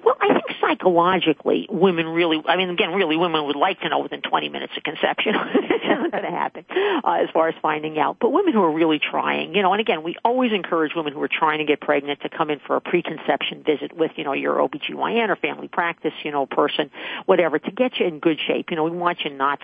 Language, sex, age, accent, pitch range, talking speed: English, female, 50-69, American, 145-180 Hz, 250 wpm